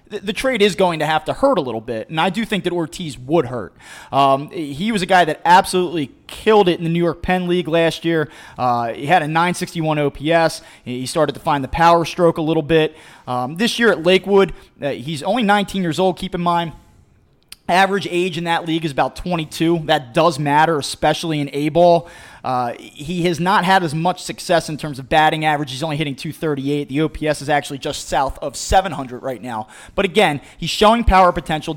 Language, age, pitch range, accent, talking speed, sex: English, 20-39, 150-185 Hz, American, 215 wpm, male